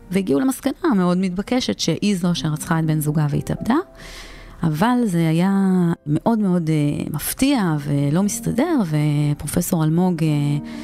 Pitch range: 145-195 Hz